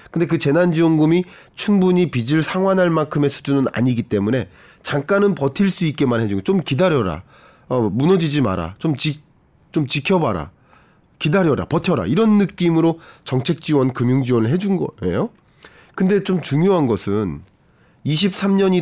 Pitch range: 130-185 Hz